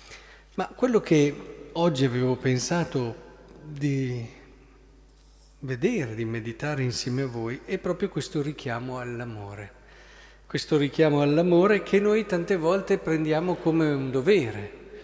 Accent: native